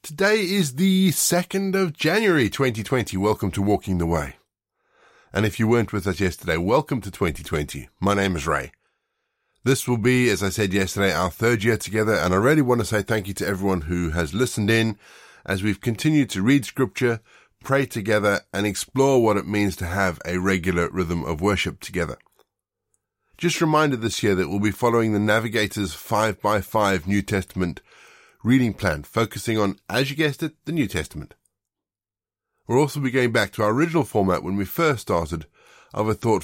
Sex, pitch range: male, 95-120 Hz